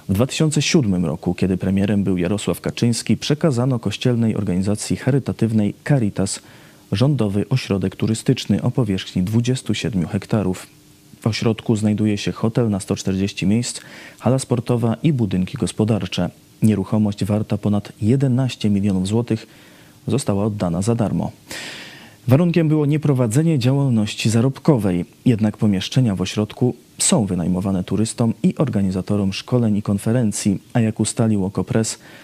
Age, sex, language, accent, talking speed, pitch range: 30-49, male, Polish, native, 120 wpm, 100-120 Hz